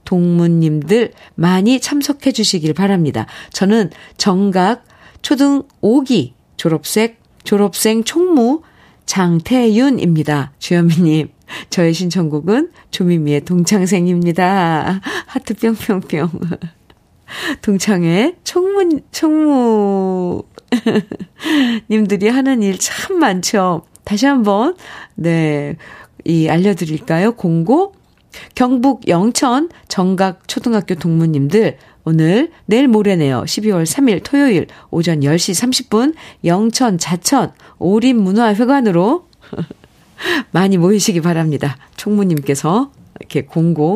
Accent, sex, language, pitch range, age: native, female, Korean, 165-240 Hz, 50-69